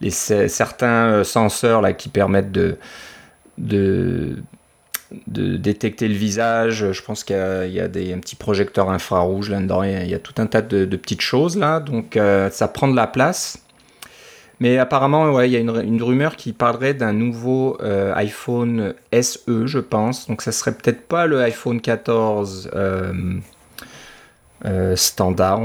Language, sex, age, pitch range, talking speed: French, male, 30-49, 100-125 Hz, 180 wpm